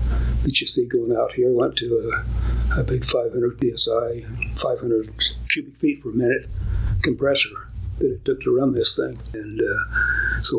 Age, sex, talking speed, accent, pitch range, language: 60-79, male, 165 wpm, American, 115-135 Hz, English